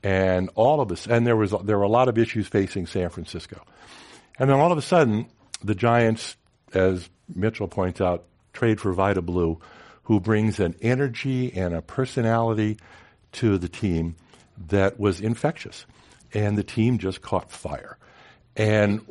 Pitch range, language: 85-110 Hz, English